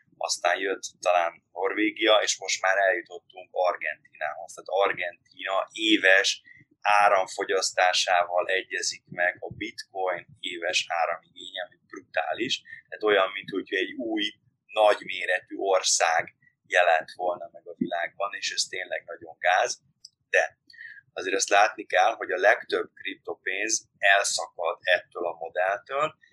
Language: Hungarian